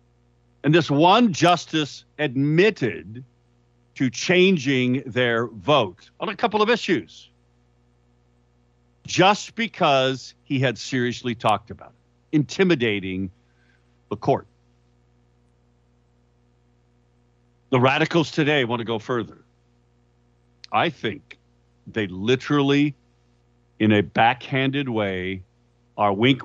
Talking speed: 95 wpm